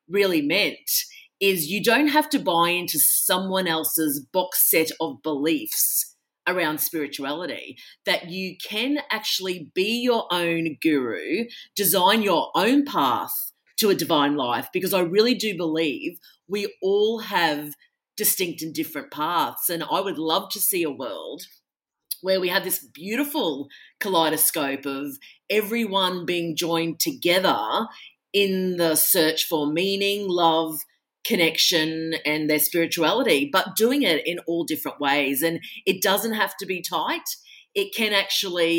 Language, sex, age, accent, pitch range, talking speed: English, female, 40-59, Australian, 155-200 Hz, 140 wpm